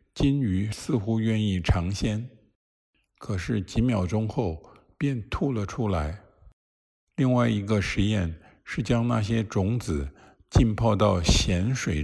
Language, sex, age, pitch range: Chinese, male, 50-69, 85-110 Hz